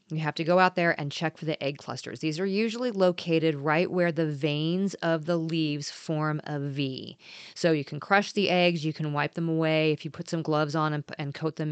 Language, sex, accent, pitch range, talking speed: English, female, American, 150-180 Hz, 240 wpm